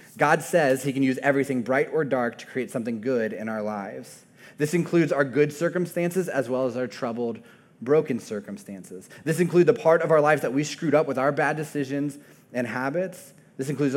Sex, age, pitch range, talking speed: male, 20-39, 125-155 Hz, 200 wpm